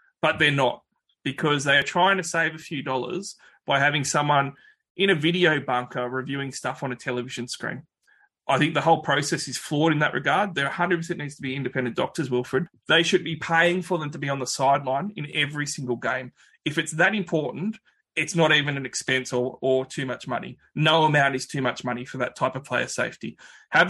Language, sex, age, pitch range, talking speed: English, male, 20-39, 130-165 Hz, 215 wpm